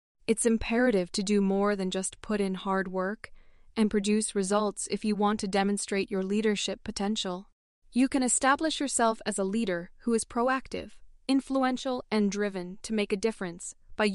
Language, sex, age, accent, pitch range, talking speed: English, female, 20-39, American, 195-240 Hz, 170 wpm